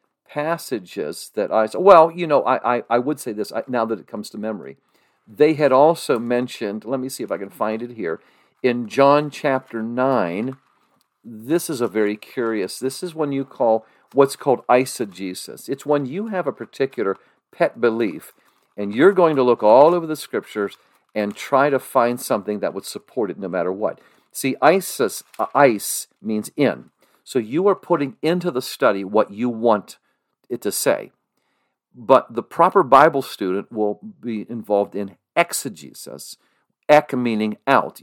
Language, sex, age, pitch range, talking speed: English, male, 50-69, 105-140 Hz, 170 wpm